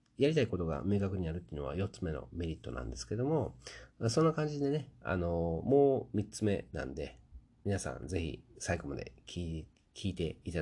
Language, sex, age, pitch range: Japanese, male, 40-59, 80-115 Hz